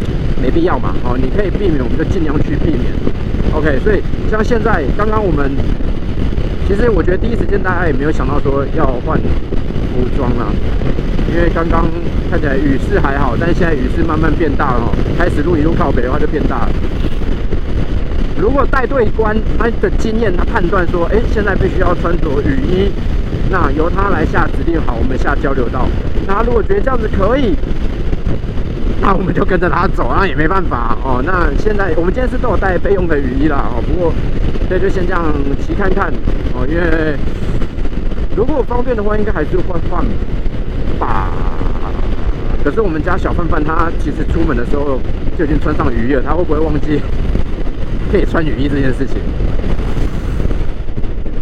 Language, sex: Chinese, male